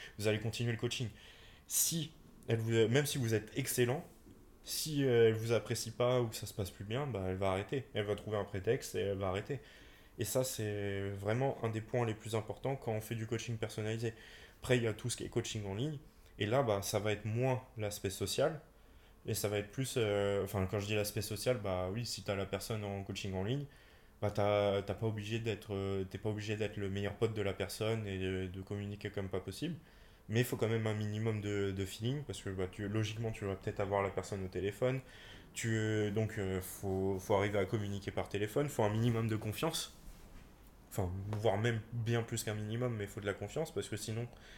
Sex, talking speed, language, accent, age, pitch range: male, 235 wpm, French, French, 20-39, 100-115 Hz